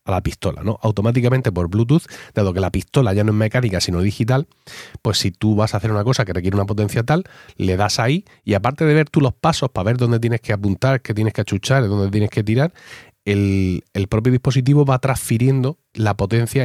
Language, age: Spanish, 30-49